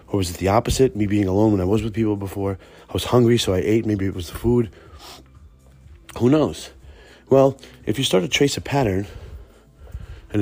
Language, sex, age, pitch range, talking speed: English, male, 30-49, 90-115 Hz, 205 wpm